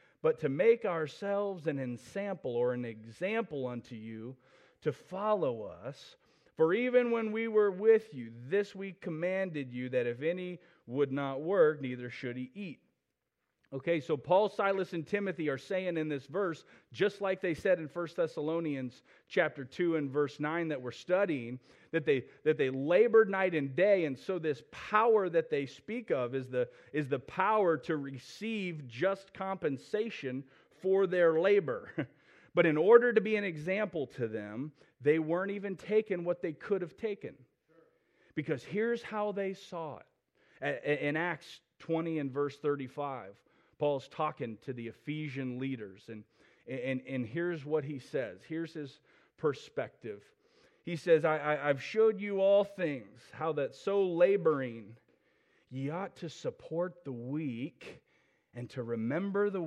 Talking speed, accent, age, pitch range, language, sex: 155 wpm, American, 40-59, 135-195 Hz, English, male